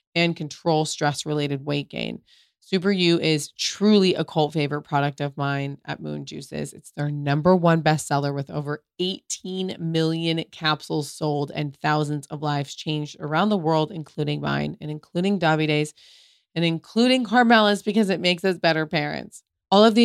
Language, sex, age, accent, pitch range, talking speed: English, female, 20-39, American, 145-180 Hz, 160 wpm